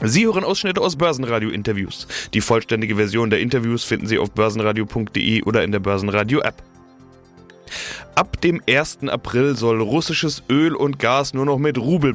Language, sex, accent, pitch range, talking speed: German, male, German, 115-155 Hz, 155 wpm